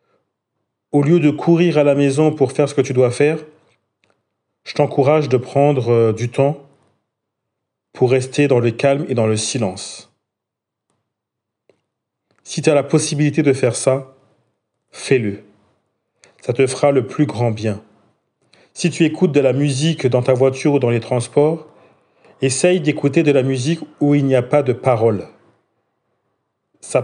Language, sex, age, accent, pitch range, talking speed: French, male, 40-59, French, 120-145 Hz, 160 wpm